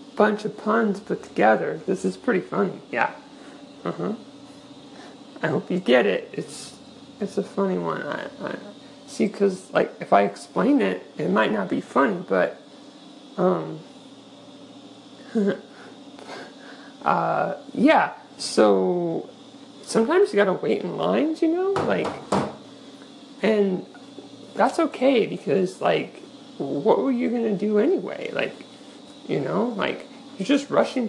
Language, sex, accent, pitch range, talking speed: English, male, American, 210-280 Hz, 130 wpm